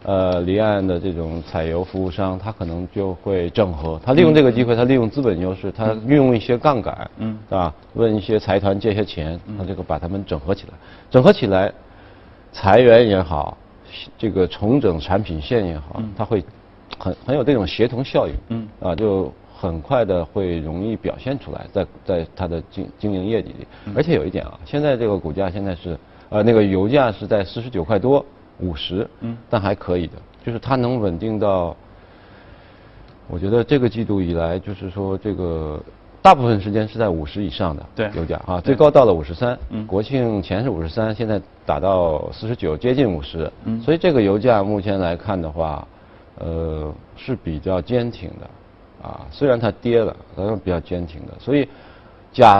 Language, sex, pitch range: Chinese, male, 90-115 Hz